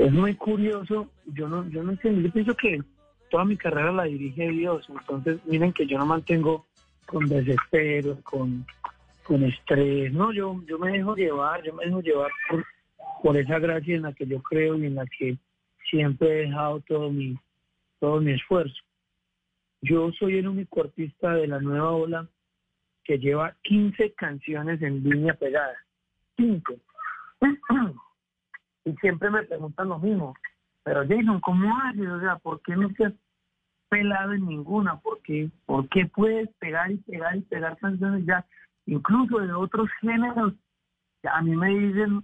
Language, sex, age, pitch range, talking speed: Spanish, male, 40-59, 150-205 Hz, 165 wpm